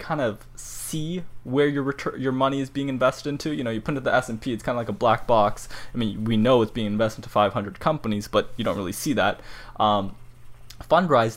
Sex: male